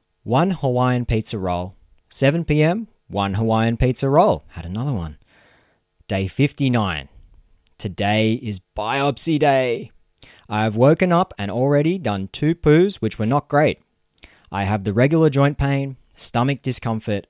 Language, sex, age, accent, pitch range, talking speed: English, male, 20-39, Australian, 90-125 Hz, 135 wpm